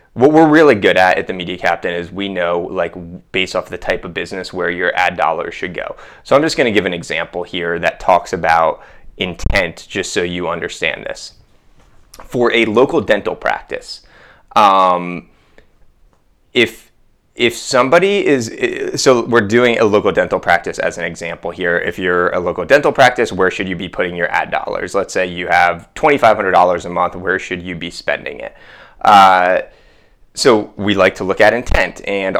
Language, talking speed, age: English, 190 wpm, 20-39